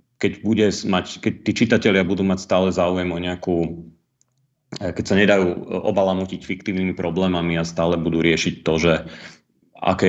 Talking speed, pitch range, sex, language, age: 150 wpm, 80-90 Hz, male, Slovak, 30-49